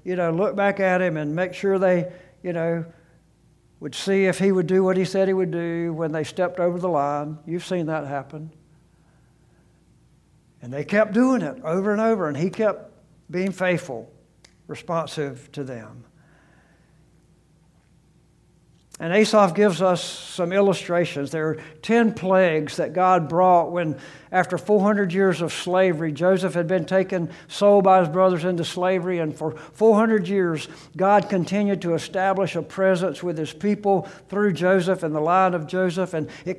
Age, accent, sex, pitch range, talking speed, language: 60-79, American, male, 160-195 Hz, 165 wpm, English